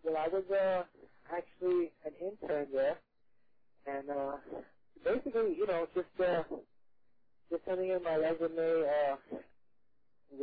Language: English